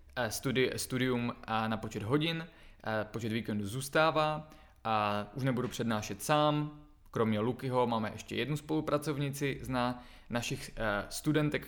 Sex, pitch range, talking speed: male, 110-140 Hz, 105 wpm